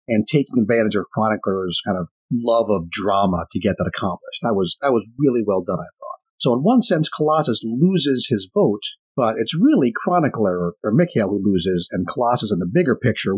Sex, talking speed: male, 200 wpm